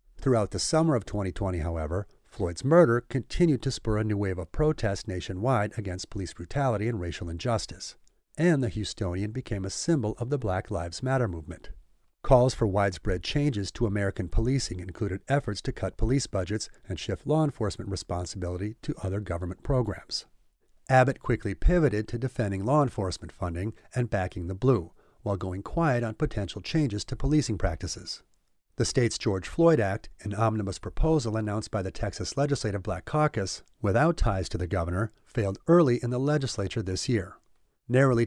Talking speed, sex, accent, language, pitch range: 165 wpm, male, American, English, 95-130 Hz